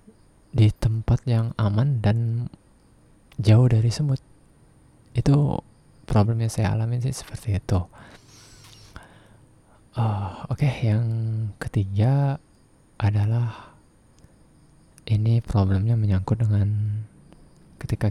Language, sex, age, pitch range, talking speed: Indonesian, male, 20-39, 105-130 Hz, 90 wpm